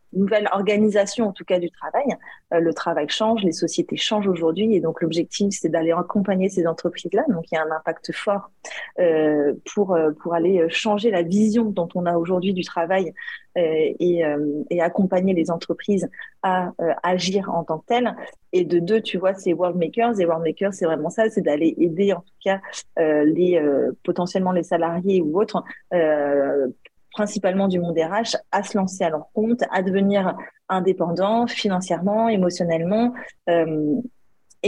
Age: 30-49